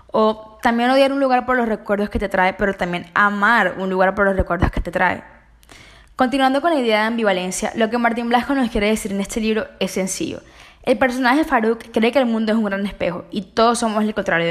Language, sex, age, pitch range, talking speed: Spanish, female, 10-29, 185-235 Hz, 235 wpm